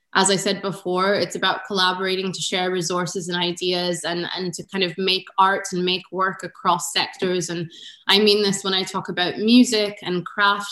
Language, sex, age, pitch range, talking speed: English, female, 20-39, 180-200 Hz, 195 wpm